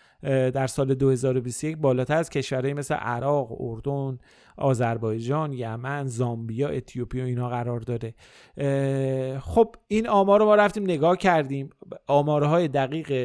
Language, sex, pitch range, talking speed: Persian, male, 130-160 Hz, 120 wpm